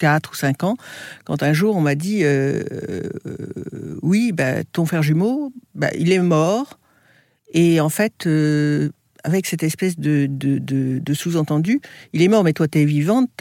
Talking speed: 185 wpm